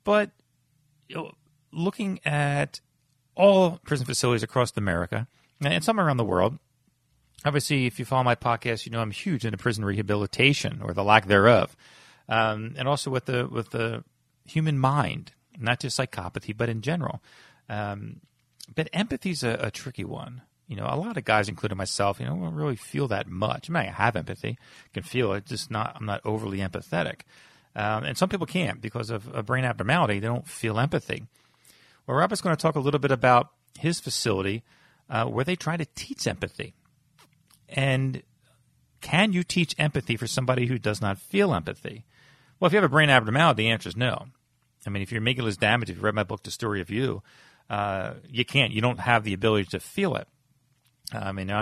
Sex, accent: male, American